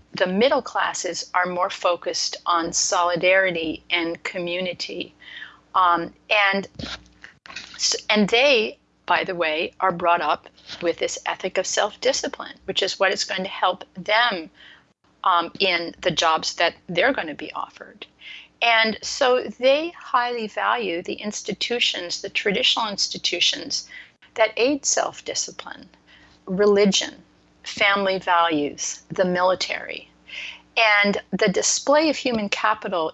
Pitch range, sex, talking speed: 175-215 Hz, female, 120 wpm